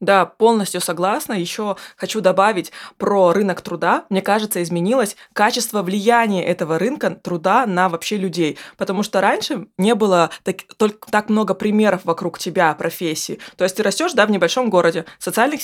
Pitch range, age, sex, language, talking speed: 170-225 Hz, 20-39, female, Russian, 160 wpm